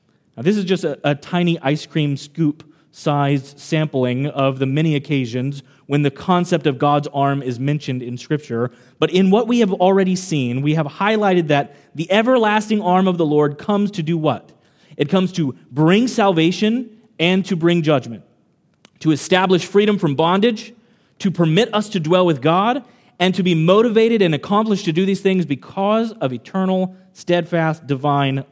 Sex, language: male, English